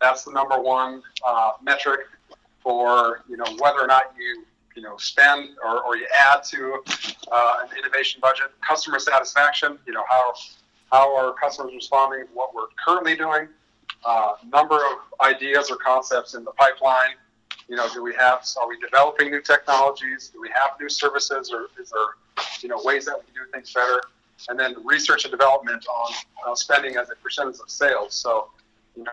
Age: 40-59